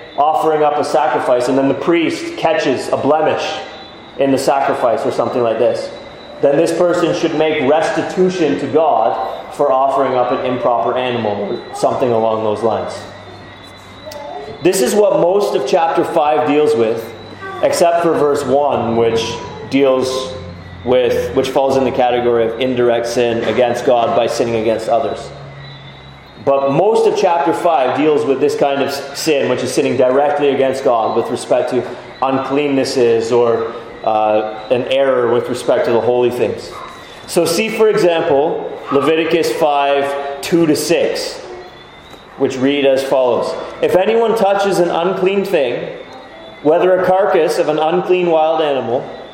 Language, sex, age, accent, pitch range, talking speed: English, male, 30-49, American, 125-165 Hz, 150 wpm